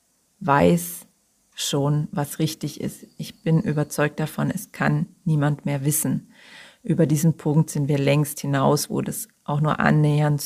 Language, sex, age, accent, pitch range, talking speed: German, female, 40-59, German, 150-170 Hz, 150 wpm